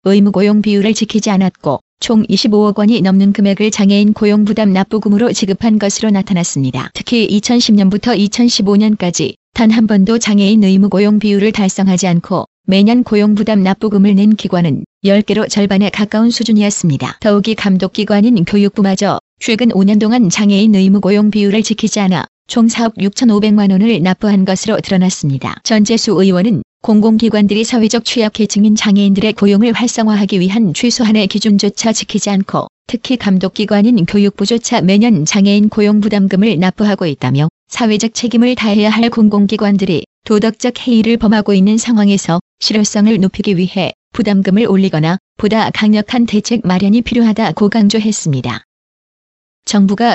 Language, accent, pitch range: Korean, native, 195-220 Hz